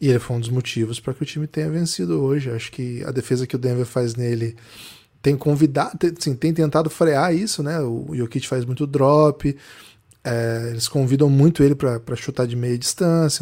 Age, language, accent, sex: 10-29, Portuguese, Brazilian, male